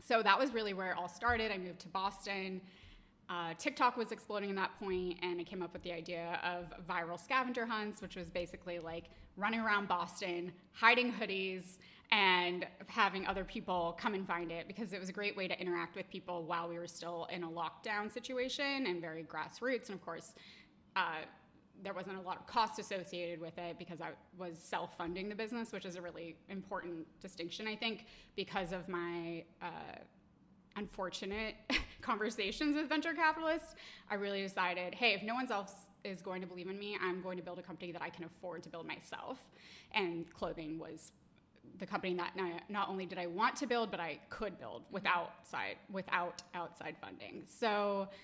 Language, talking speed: English, 190 wpm